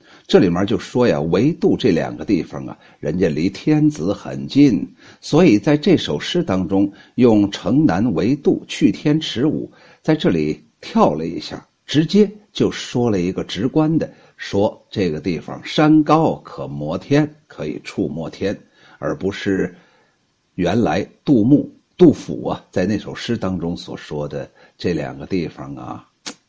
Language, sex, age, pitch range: Chinese, male, 60-79, 100-160 Hz